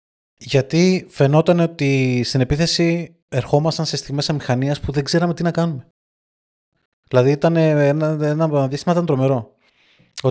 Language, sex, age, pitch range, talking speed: Greek, male, 20-39, 115-160 Hz, 135 wpm